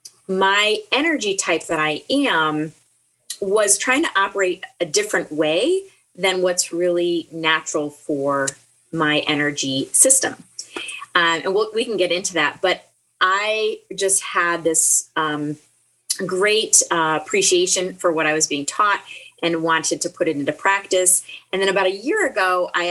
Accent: American